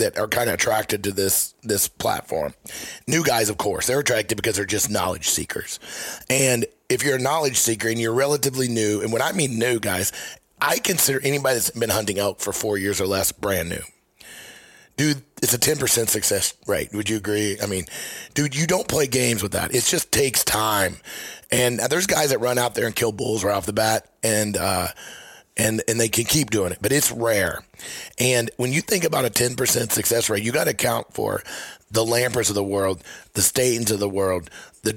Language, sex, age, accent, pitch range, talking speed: English, male, 30-49, American, 105-130 Hz, 215 wpm